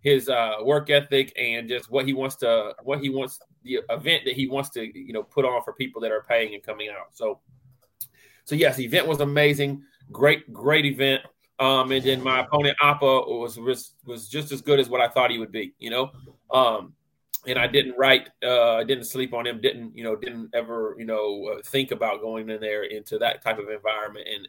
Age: 30-49